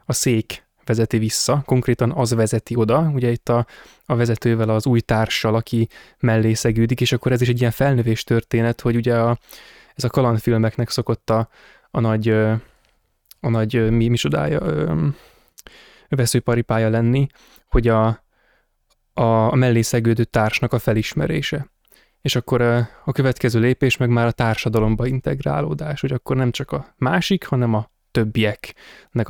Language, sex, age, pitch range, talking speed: Hungarian, male, 20-39, 115-125 Hz, 155 wpm